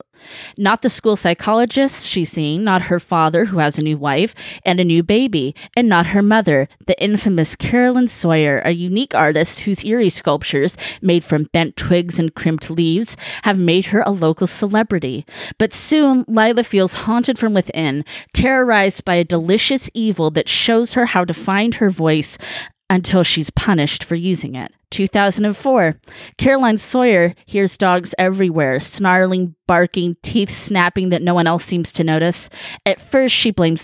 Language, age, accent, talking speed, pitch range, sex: English, 20-39, American, 165 wpm, 165-210 Hz, female